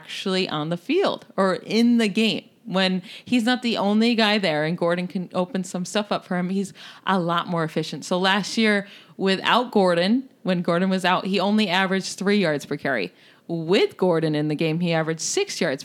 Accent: American